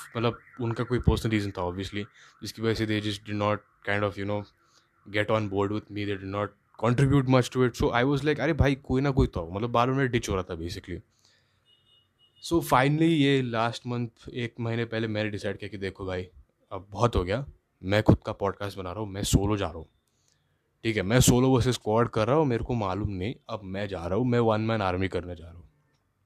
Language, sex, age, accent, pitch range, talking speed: English, male, 10-29, Indian, 100-125 Hz, 120 wpm